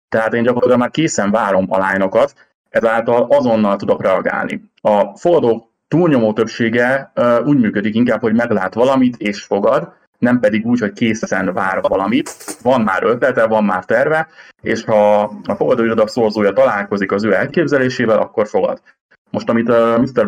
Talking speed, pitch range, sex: 150 wpm, 105-135 Hz, male